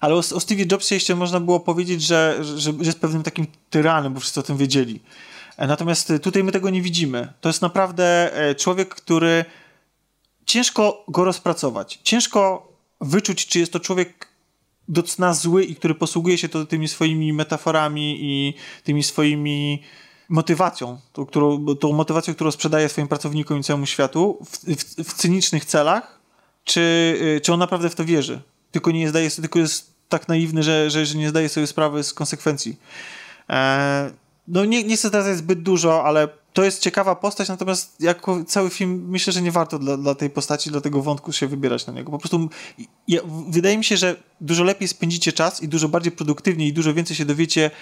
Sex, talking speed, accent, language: male, 175 wpm, native, Polish